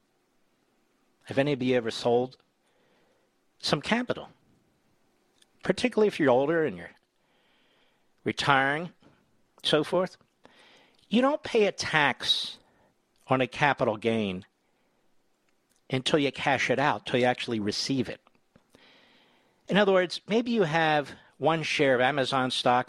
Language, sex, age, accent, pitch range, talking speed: English, male, 50-69, American, 125-175 Hz, 125 wpm